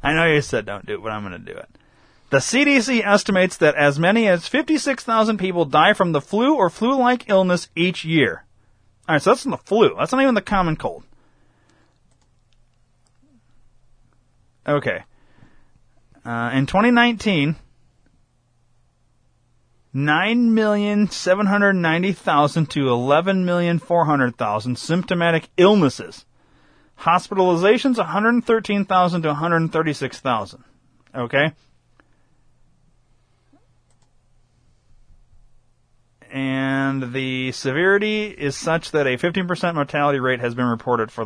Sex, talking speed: male, 105 wpm